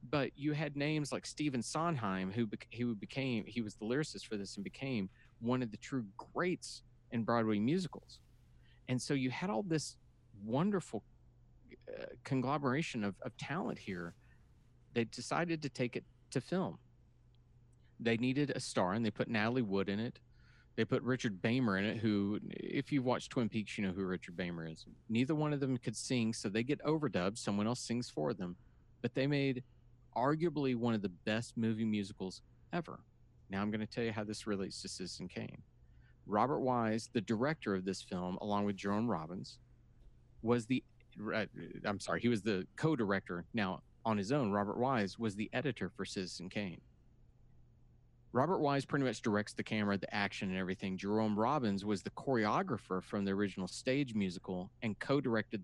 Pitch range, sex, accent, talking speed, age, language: 105-130 Hz, male, American, 180 wpm, 40-59, English